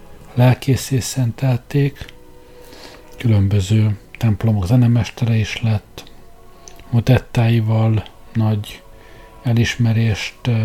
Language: Hungarian